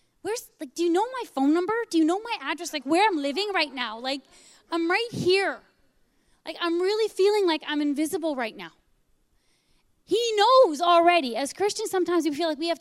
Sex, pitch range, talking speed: female, 255-350 Hz, 200 wpm